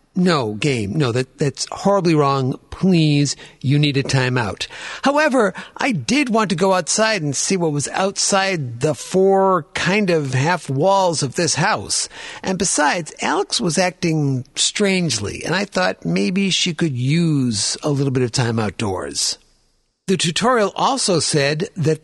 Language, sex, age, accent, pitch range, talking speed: English, male, 50-69, American, 145-195 Hz, 150 wpm